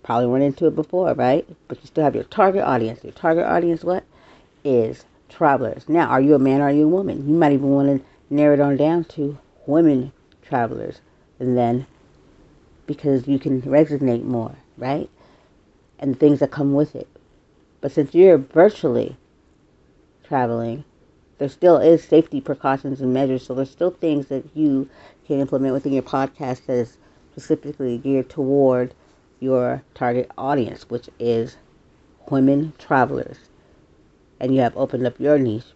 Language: English